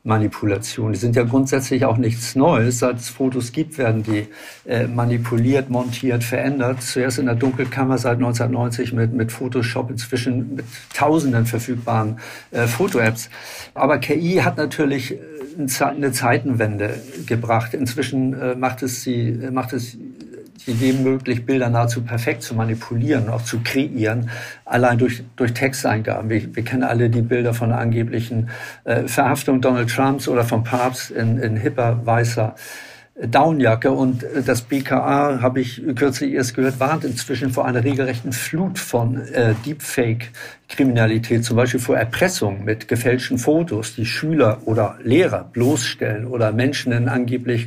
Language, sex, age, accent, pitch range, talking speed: German, male, 50-69, German, 115-135 Hz, 140 wpm